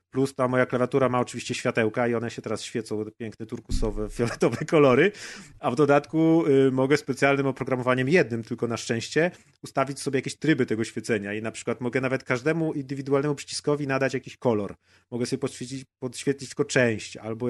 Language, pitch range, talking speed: Polish, 110-130 Hz, 170 wpm